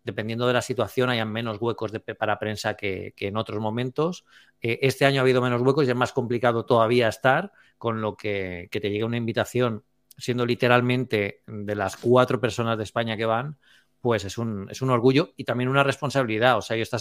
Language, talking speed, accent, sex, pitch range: Spanish, 210 wpm, Spanish, male, 110-130 Hz